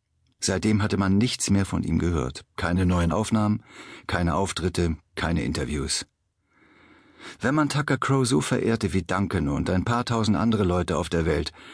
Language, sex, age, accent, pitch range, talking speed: German, male, 50-69, German, 90-115 Hz, 165 wpm